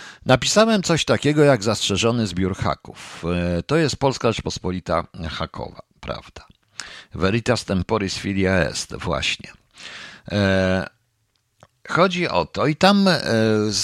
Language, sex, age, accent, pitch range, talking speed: Polish, male, 50-69, native, 100-130 Hz, 110 wpm